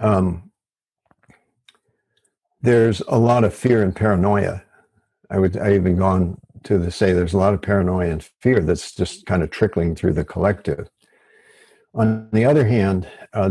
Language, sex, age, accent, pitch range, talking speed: English, male, 60-79, American, 90-105 Hz, 160 wpm